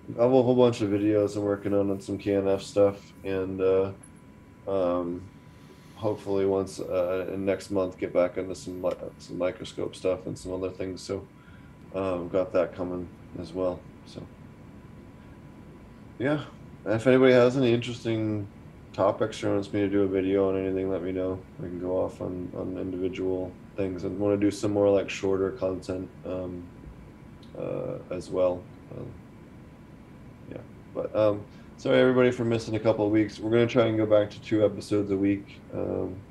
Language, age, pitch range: English, 20-39, 95-105 Hz